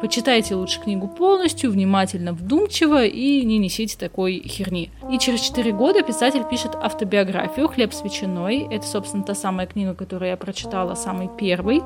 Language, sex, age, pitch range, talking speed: Russian, female, 20-39, 195-250 Hz, 155 wpm